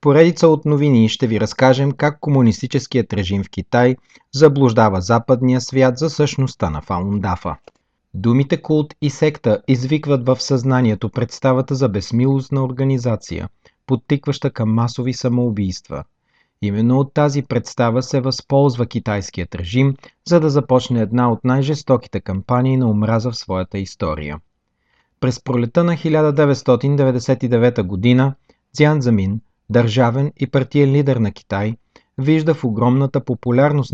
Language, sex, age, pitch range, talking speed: Bulgarian, male, 40-59, 105-135 Hz, 120 wpm